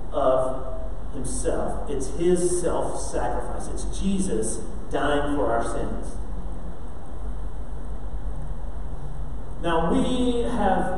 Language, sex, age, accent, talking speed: English, male, 40-59, American, 75 wpm